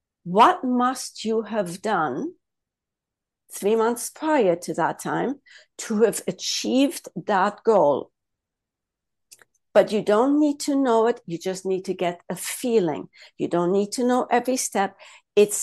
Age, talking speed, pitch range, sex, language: 60-79, 145 wpm, 185-245 Hz, female, English